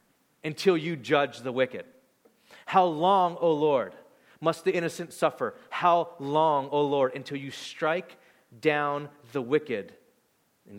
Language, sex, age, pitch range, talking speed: English, male, 30-49, 135-170 Hz, 135 wpm